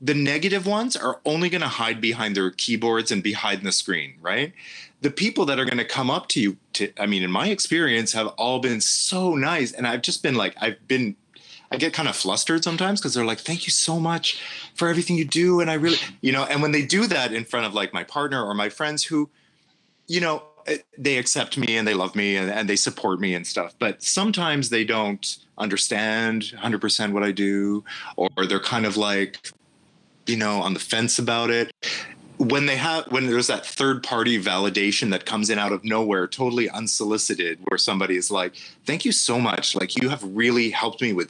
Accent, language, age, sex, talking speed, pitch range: American, English, 30-49, male, 220 wpm, 105-145 Hz